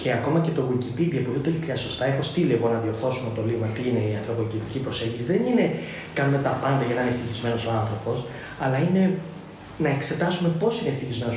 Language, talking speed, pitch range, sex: Greek, 210 wpm, 120-175 Hz, male